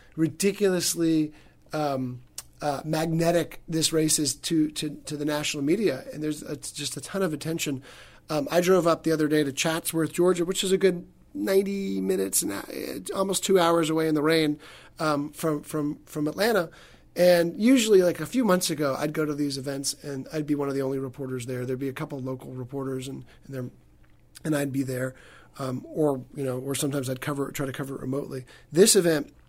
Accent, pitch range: American, 140-165 Hz